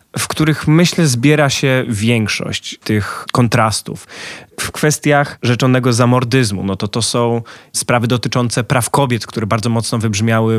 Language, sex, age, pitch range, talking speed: Polish, male, 20-39, 115-135 Hz, 135 wpm